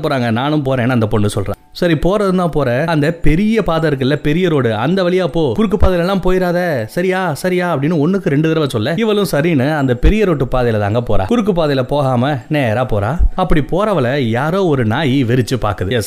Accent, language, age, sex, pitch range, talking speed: native, Tamil, 30-49, male, 130-175 Hz, 190 wpm